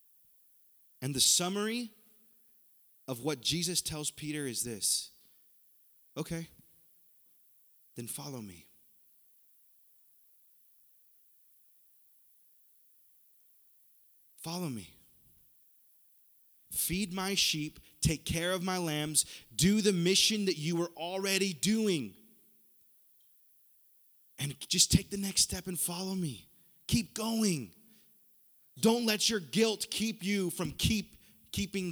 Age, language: 30-49, English